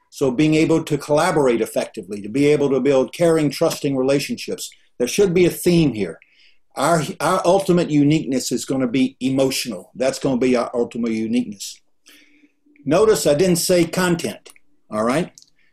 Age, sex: 60-79, male